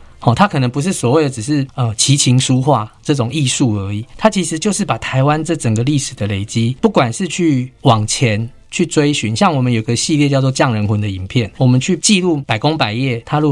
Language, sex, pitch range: Chinese, male, 115-160 Hz